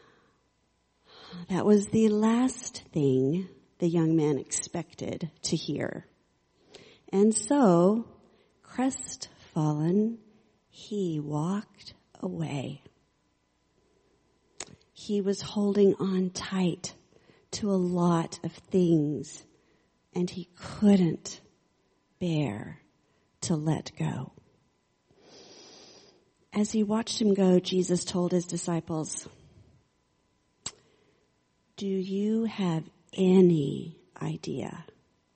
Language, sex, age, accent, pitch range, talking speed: English, female, 40-59, American, 160-200 Hz, 80 wpm